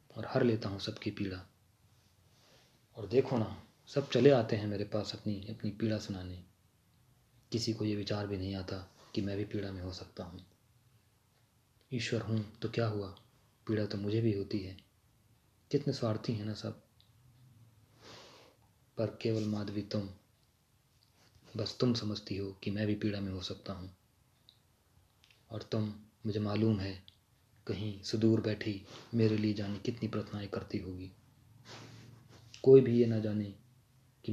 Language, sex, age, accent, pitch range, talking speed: Hindi, male, 30-49, native, 100-115 Hz, 150 wpm